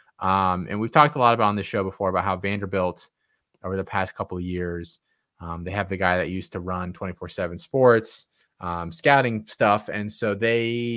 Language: English